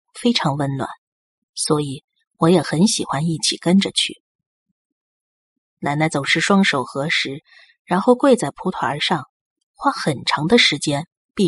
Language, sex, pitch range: Chinese, female, 155-225 Hz